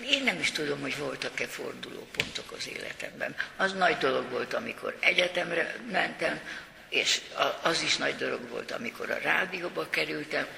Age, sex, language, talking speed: 60-79, female, Hungarian, 145 wpm